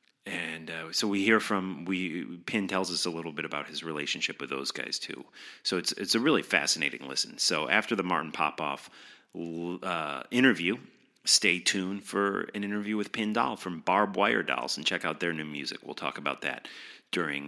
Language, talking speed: English, 195 wpm